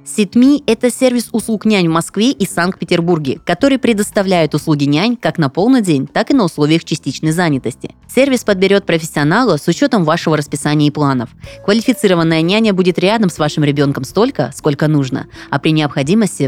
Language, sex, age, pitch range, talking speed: Russian, female, 20-39, 145-205 Hz, 165 wpm